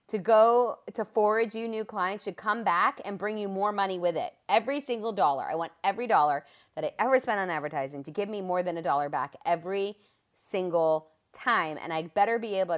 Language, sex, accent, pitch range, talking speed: English, female, American, 155-220 Hz, 215 wpm